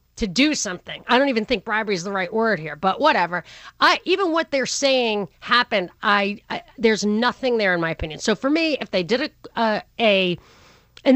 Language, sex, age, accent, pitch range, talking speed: English, female, 40-59, American, 200-270 Hz, 210 wpm